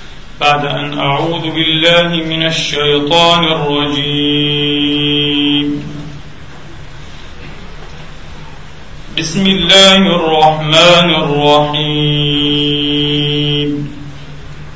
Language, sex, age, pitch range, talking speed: English, male, 40-59, 150-215 Hz, 45 wpm